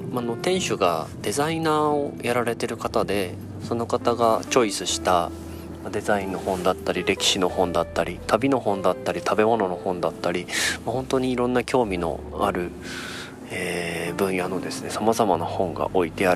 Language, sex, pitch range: Japanese, male, 90-130 Hz